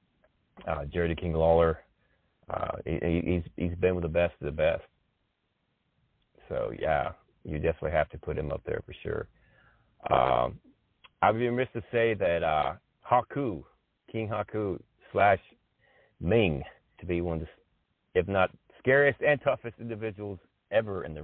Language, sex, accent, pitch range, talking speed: English, male, American, 80-105 Hz, 160 wpm